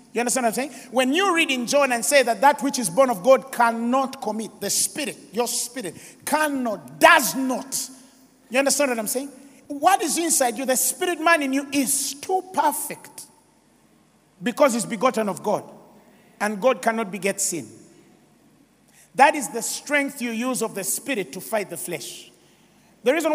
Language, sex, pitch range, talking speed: English, male, 235-320 Hz, 180 wpm